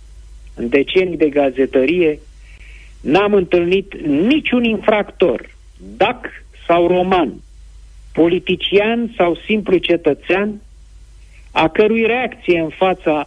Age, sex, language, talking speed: 50-69, male, Romanian, 90 wpm